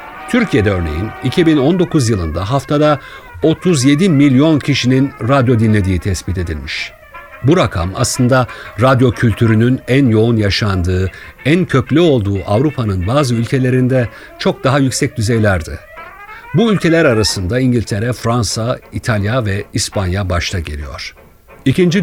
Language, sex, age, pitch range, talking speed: Turkish, male, 60-79, 105-140 Hz, 110 wpm